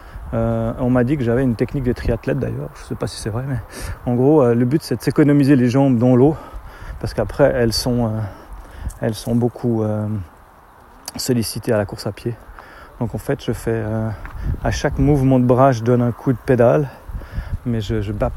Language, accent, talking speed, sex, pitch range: French, French, 220 wpm, male, 110-130 Hz